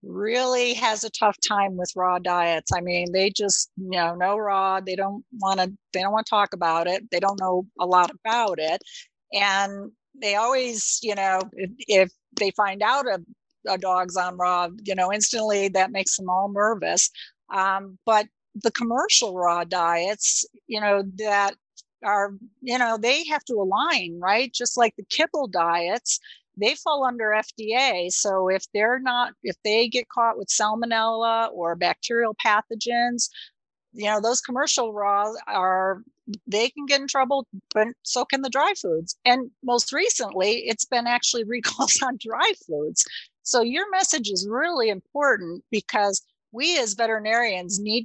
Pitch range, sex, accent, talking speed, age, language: 195-245 Hz, female, American, 165 wpm, 50-69, English